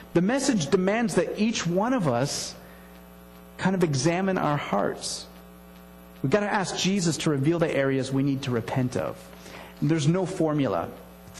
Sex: male